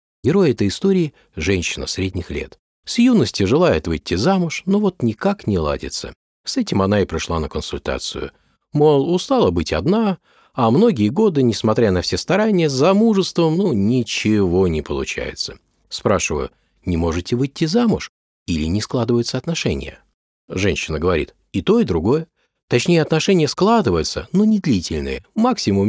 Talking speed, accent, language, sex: 145 wpm, native, Russian, male